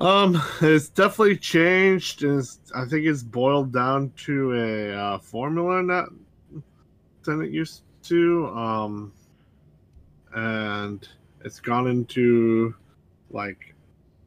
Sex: male